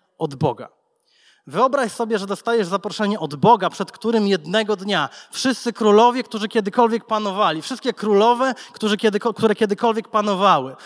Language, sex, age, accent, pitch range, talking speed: Polish, male, 20-39, native, 190-230 Hz, 125 wpm